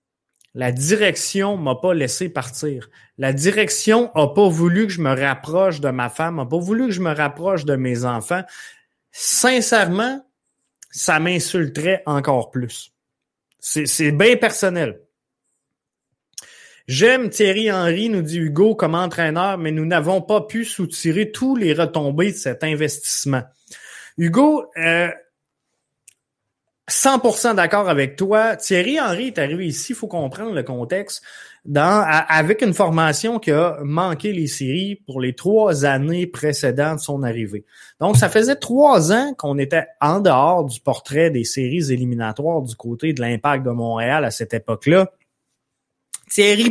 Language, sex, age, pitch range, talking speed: French, male, 30-49, 140-205 Hz, 145 wpm